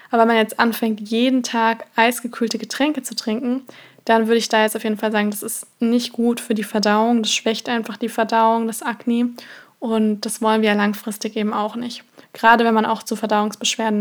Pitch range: 220-240 Hz